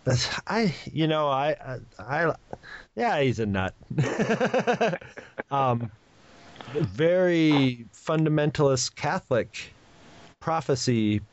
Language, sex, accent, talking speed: English, male, American, 80 wpm